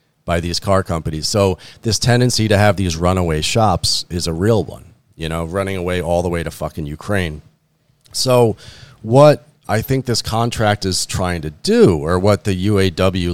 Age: 40-59